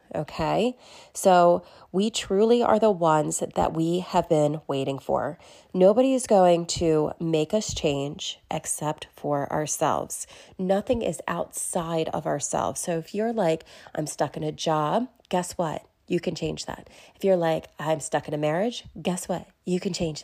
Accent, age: American, 30-49